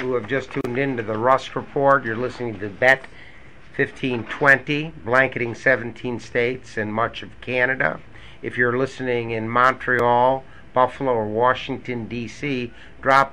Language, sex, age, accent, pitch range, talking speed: English, male, 60-79, American, 120-135 Hz, 140 wpm